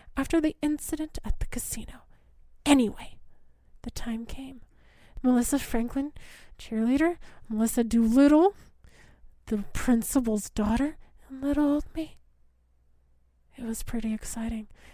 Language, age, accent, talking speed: English, 30-49, American, 105 wpm